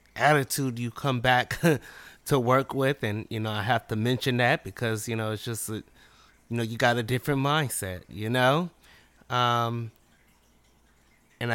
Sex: male